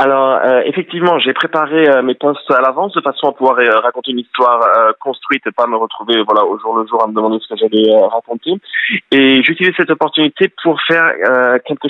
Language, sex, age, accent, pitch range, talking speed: French, male, 20-39, French, 120-150 Hz, 230 wpm